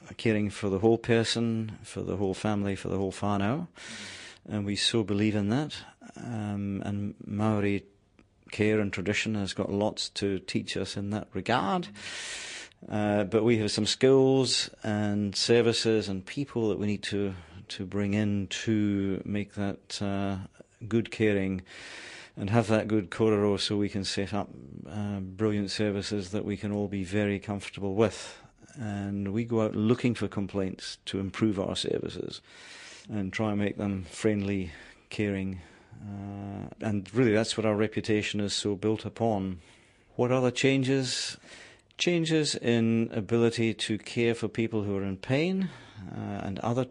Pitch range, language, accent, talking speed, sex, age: 100-115 Hz, English, British, 160 wpm, male, 40-59